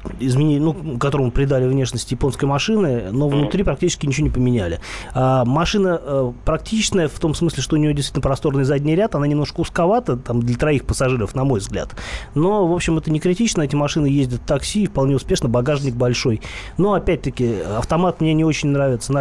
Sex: male